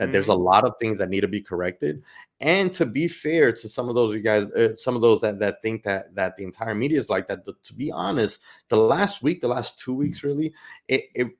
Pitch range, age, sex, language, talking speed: 105-140 Hz, 30-49, male, English, 265 wpm